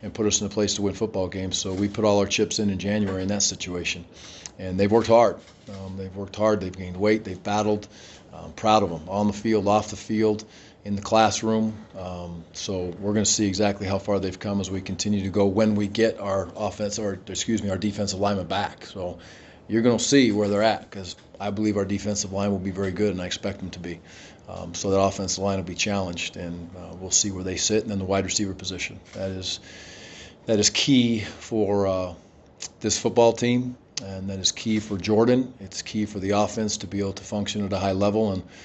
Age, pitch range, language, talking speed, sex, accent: 40-59, 95-105 Hz, English, 235 wpm, male, American